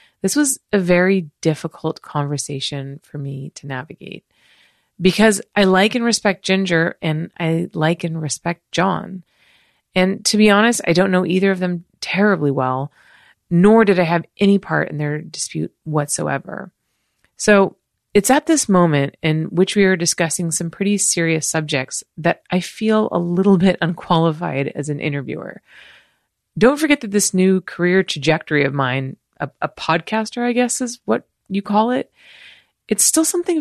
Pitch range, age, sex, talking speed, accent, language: 165-205 Hz, 30-49, female, 160 wpm, American, English